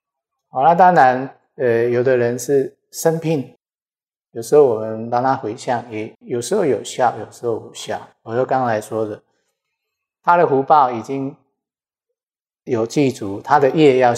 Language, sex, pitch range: Chinese, male, 110-140 Hz